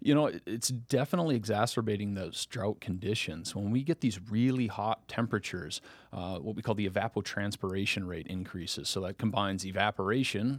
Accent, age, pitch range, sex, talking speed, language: American, 30-49, 95-115 Hz, male, 155 wpm, English